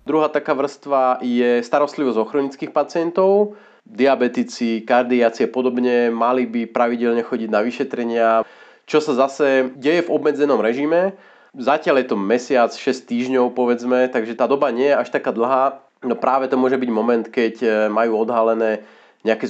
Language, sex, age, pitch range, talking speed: Slovak, male, 30-49, 120-140 Hz, 155 wpm